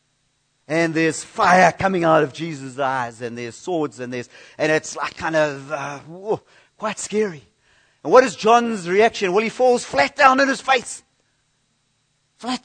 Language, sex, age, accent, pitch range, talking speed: English, male, 40-59, British, 150-210 Hz, 165 wpm